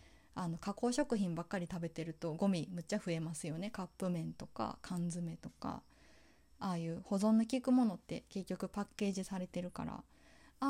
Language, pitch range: Japanese, 170-225 Hz